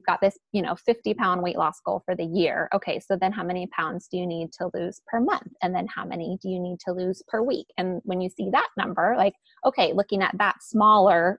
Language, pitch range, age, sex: English, 185-230 Hz, 20-39, female